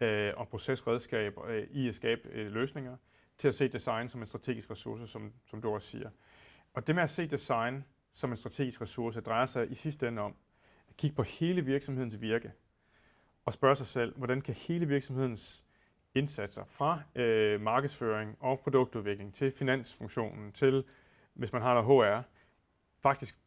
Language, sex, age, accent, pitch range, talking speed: Danish, male, 30-49, native, 110-135 Hz, 165 wpm